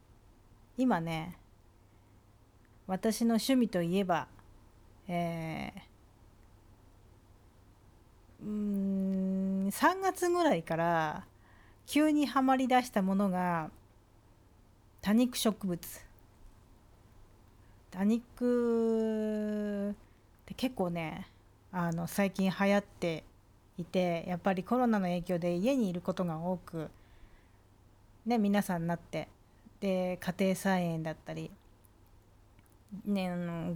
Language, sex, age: Japanese, female, 40-59